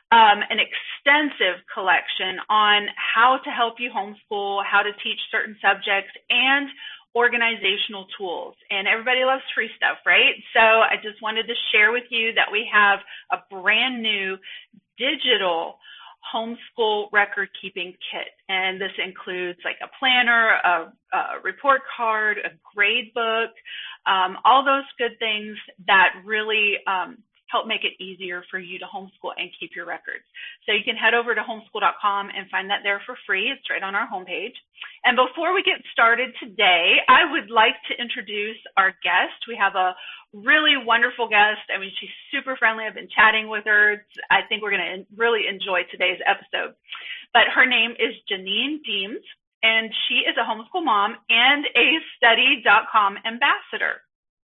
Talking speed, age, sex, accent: 165 wpm, 30-49, female, American